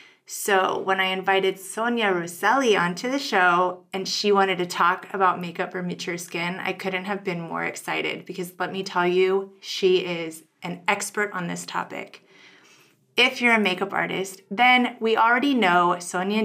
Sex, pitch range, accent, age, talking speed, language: female, 180-205 Hz, American, 30-49, 170 wpm, English